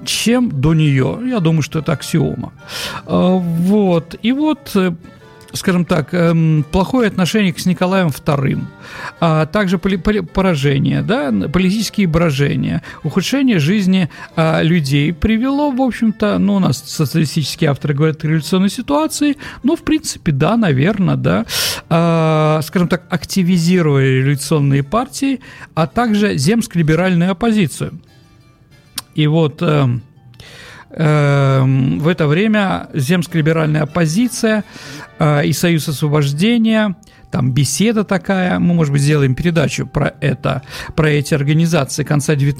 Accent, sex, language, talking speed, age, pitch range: native, male, Russian, 115 wpm, 50-69, 150-205 Hz